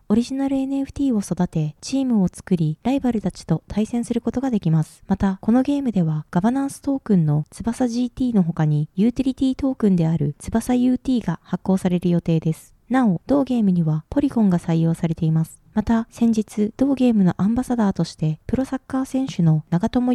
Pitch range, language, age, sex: 180-250 Hz, Japanese, 20-39, female